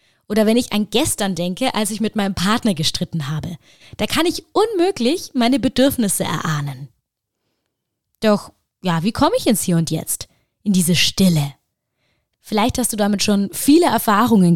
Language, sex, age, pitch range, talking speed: German, female, 20-39, 175-245 Hz, 160 wpm